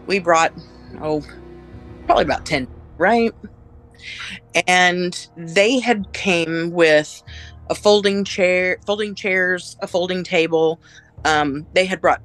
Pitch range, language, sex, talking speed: 110-175 Hz, English, female, 120 wpm